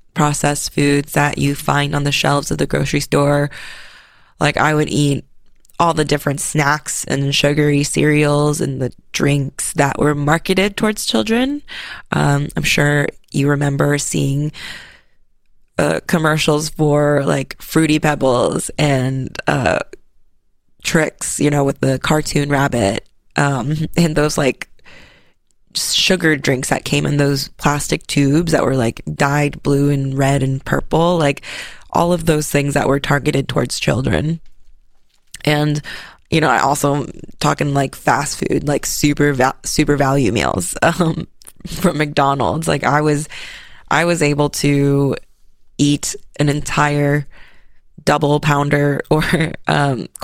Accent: American